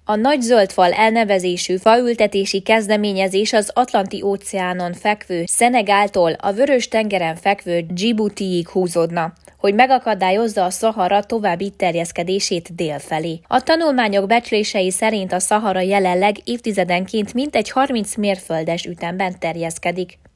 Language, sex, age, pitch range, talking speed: Hungarian, female, 20-39, 180-220 Hz, 105 wpm